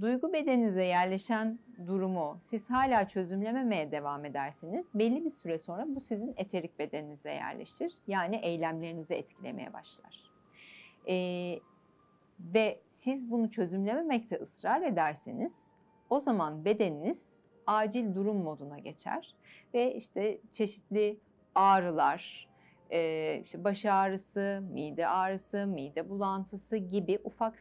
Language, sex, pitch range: Turkish, female, 175-240 Hz